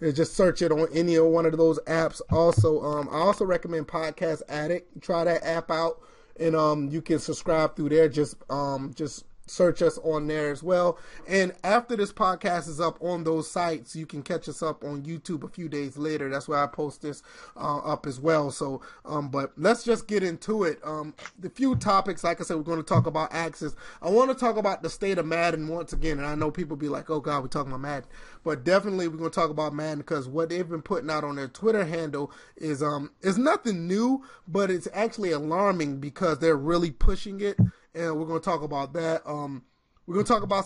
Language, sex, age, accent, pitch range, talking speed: English, male, 30-49, American, 150-180 Hz, 225 wpm